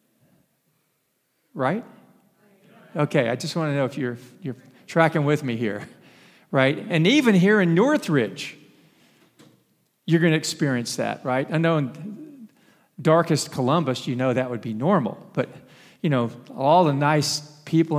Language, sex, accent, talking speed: English, male, American, 150 wpm